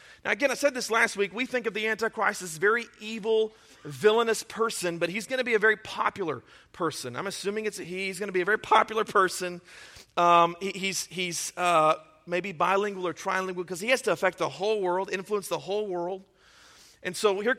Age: 40-59